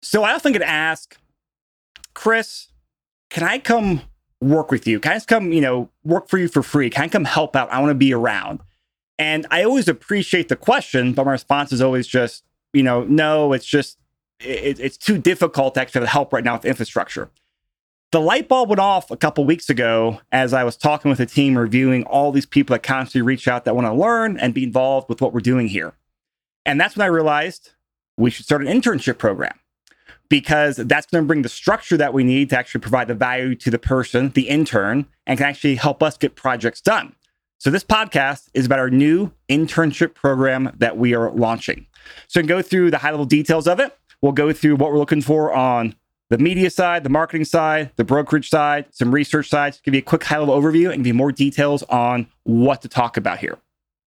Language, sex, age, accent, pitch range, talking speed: English, male, 30-49, American, 125-160 Hz, 220 wpm